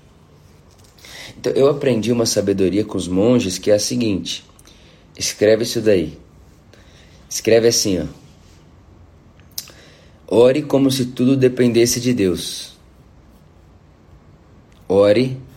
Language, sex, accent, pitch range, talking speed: Portuguese, male, Brazilian, 80-110 Hz, 95 wpm